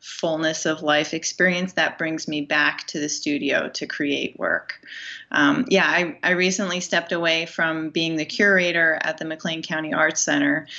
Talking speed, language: 170 wpm, English